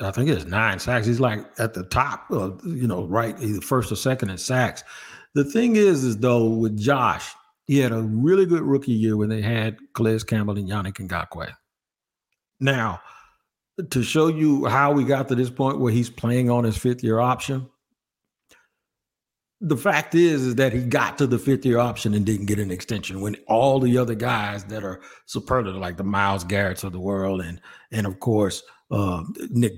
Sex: male